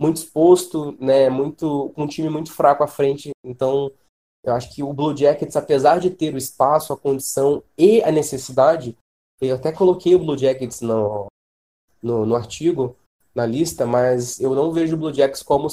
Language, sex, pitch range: Portuguese, male, 125-160 Hz